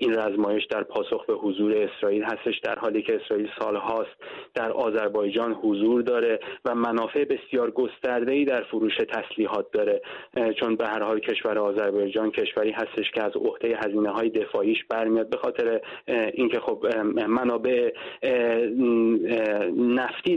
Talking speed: 135 wpm